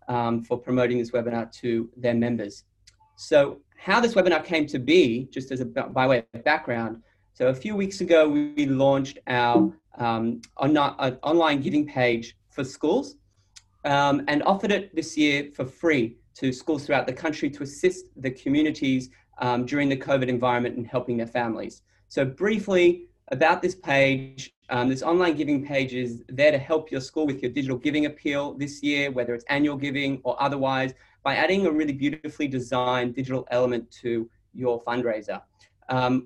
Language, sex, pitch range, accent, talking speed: English, male, 125-155 Hz, Australian, 170 wpm